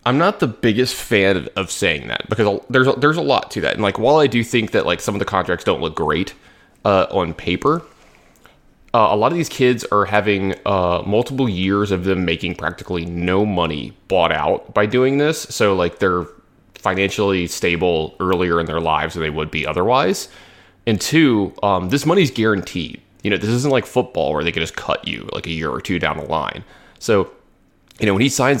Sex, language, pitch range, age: male, English, 85-110 Hz, 20-39